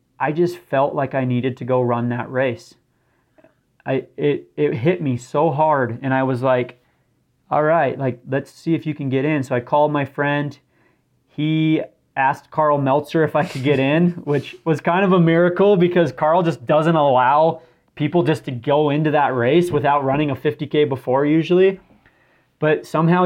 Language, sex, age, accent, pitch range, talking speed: English, male, 30-49, American, 135-165 Hz, 185 wpm